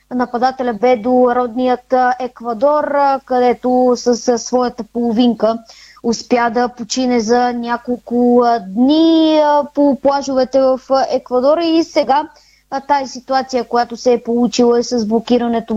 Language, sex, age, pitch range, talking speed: Bulgarian, female, 20-39, 245-270 Hz, 115 wpm